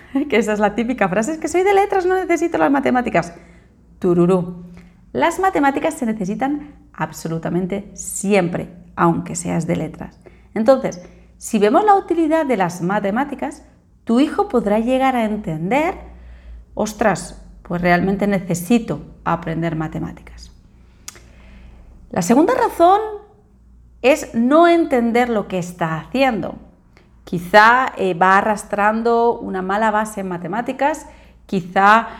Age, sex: 30-49, female